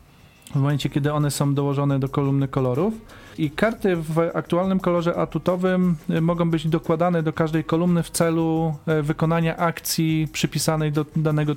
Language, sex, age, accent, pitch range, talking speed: Polish, male, 40-59, native, 140-165 Hz, 145 wpm